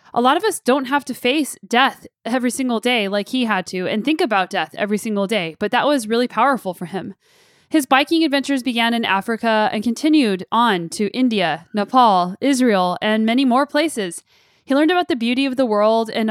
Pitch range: 210-270 Hz